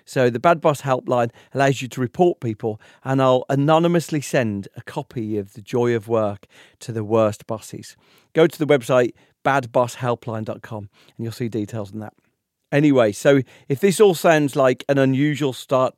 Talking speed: 175 wpm